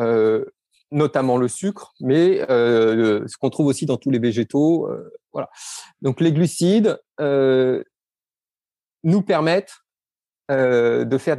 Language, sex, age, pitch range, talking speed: French, male, 40-59, 130-165 Hz, 130 wpm